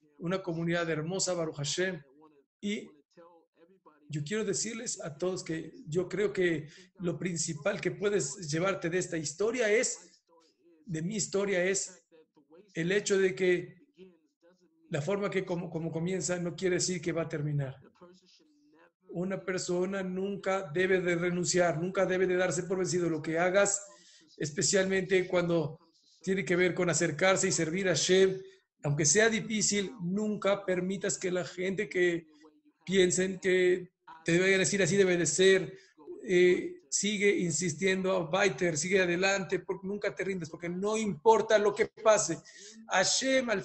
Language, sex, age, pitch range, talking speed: Spanish, male, 50-69, 170-200 Hz, 145 wpm